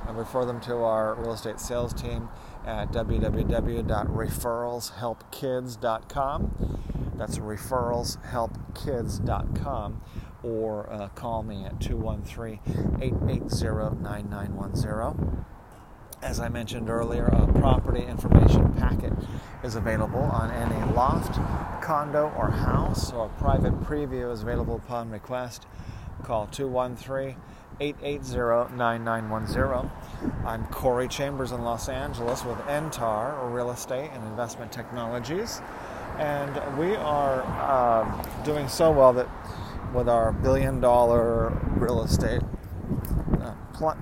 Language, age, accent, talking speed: English, 40-59, American, 105 wpm